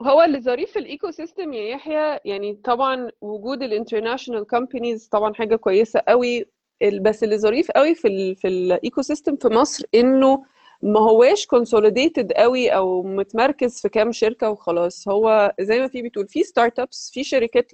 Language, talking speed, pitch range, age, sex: Arabic, 160 wpm, 210-275 Hz, 20-39, female